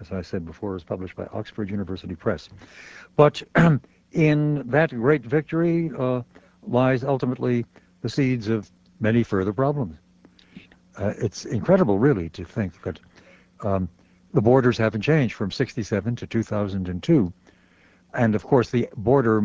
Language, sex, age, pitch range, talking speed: English, male, 60-79, 95-120 Hz, 140 wpm